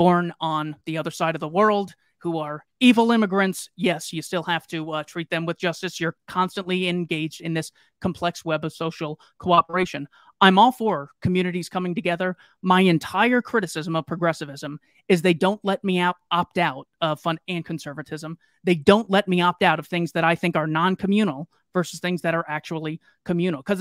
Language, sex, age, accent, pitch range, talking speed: English, male, 30-49, American, 165-200 Hz, 185 wpm